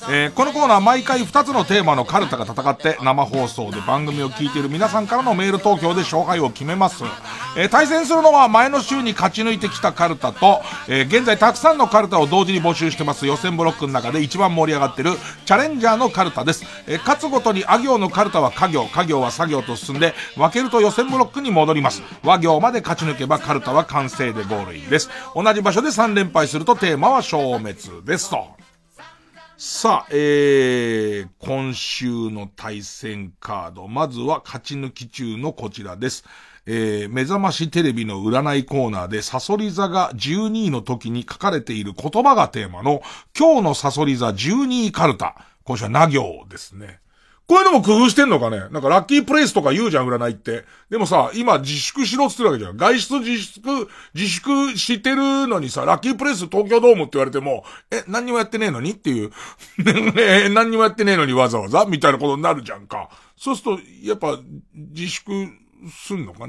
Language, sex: Japanese, male